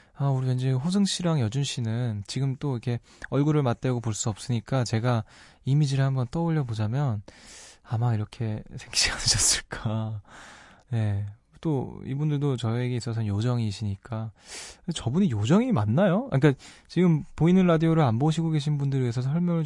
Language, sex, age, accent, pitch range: Korean, male, 20-39, native, 110-145 Hz